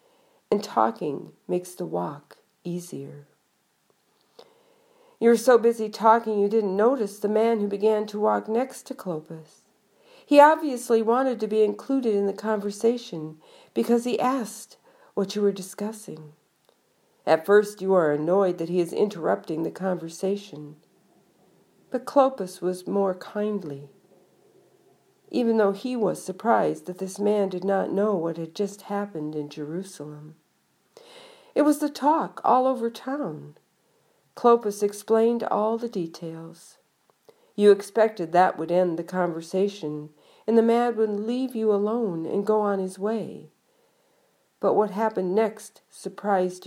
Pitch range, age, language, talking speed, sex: 180-235 Hz, 50-69, English, 140 wpm, female